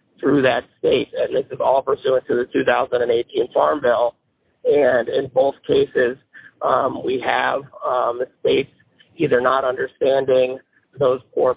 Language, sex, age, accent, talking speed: English, male, 40-59, American, 145 wpm